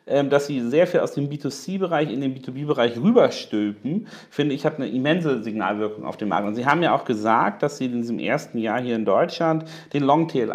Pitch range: 115-140 Hz